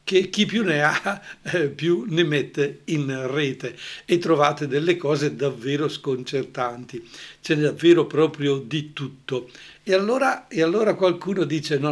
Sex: male